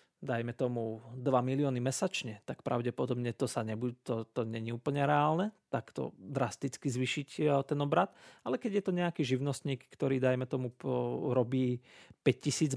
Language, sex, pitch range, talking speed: Slovak, male, 125-160 Hz, 155 wpm